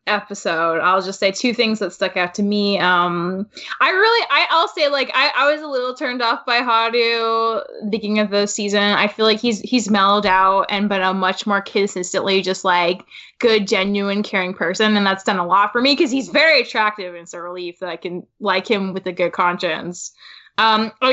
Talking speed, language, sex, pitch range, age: 215 wpm, English, female, 195-240 Hz, 10-29